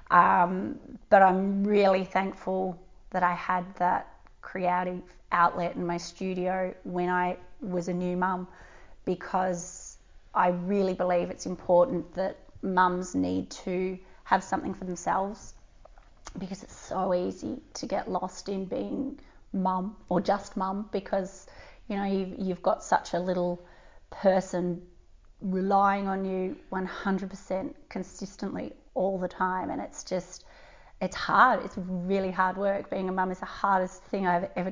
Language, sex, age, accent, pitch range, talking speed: English, female, 30-49, Australian, 180-190 Hz, 145 wpm